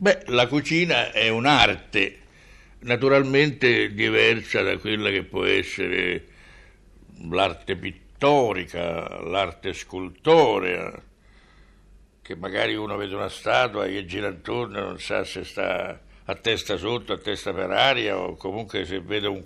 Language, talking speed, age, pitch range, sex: Italian, 130 wpm, 60-79, 105-135 Hz, male